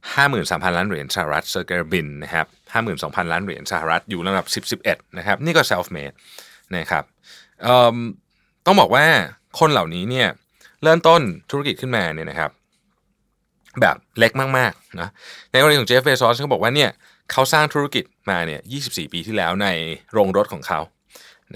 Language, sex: Thai, male